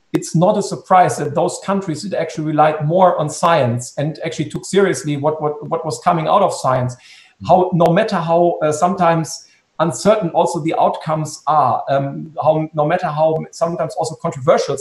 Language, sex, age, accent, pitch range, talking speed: German, male, 50-69, German, 145-170 Hz, 180 wpm